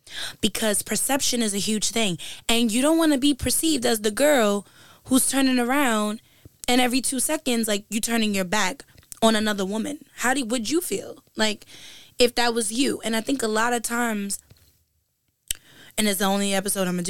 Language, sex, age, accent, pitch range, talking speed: English, female, 10-29, American, 200-255 Hz, 200 wpm